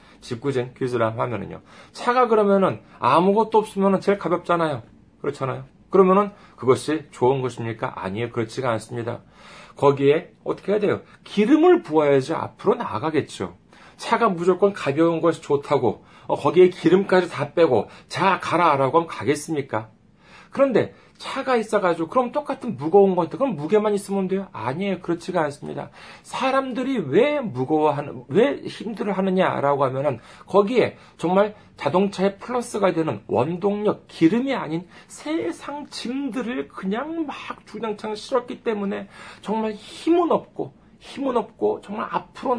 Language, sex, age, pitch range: Korean, male, 40-59, 150-225 Hz